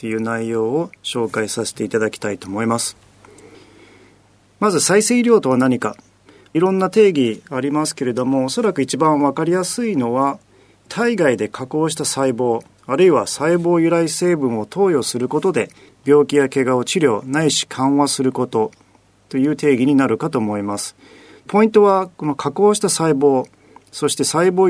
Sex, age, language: male, 40-59, Japanese